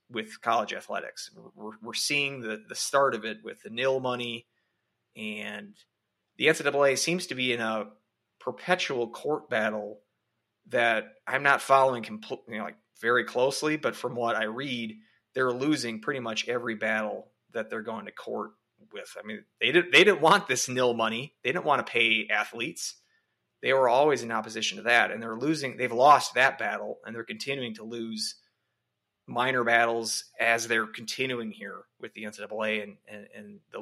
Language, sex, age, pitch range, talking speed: English, male, 30-49, 110-140 Hz, 175 wpm